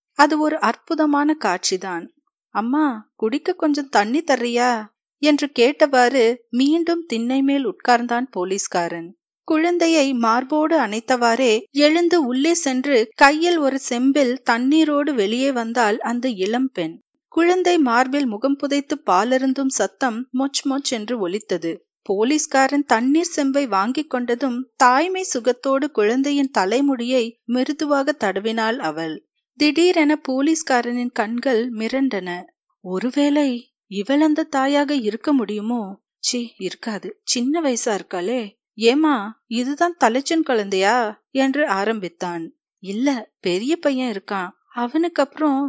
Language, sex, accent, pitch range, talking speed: Tamil, female, native, 225-295 Hz, 100 wpm